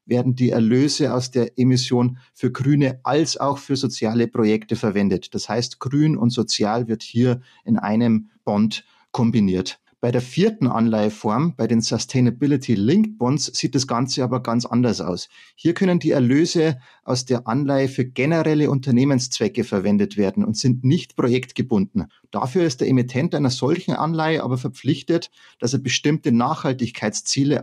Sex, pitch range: male, 115-140 Hz